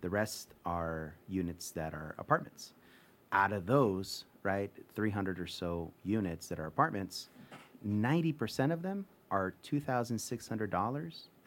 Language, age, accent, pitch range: English, 30-49, American, 90-115 Hz